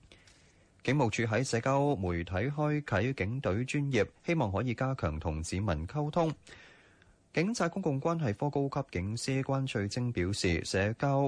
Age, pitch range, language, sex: 20-39, 90-135 Hz, Chinese, male